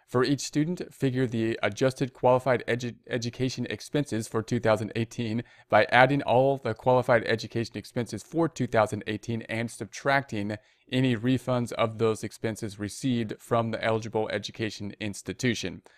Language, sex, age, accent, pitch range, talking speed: English, male, 30-49, American, 105-125 Hz, 125 wpm